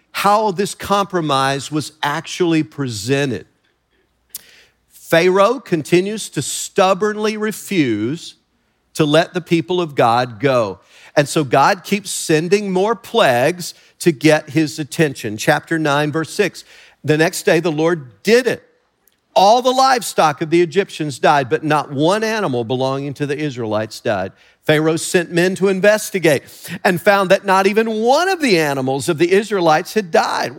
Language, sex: English, male